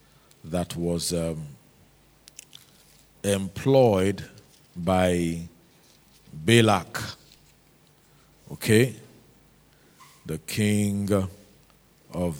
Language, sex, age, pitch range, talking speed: English, male, 50-69, 90-115 Hz, 50 wpm